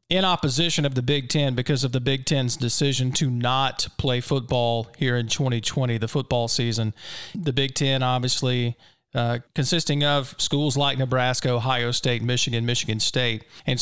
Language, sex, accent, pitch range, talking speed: English, male, American, 130-160 Hz, 165 wpm